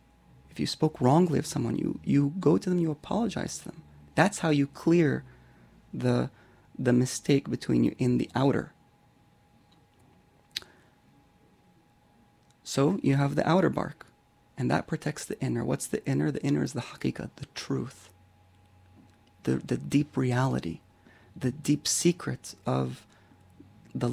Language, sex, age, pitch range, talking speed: English, male, 30-49, 115-165 Hz, 140 wpm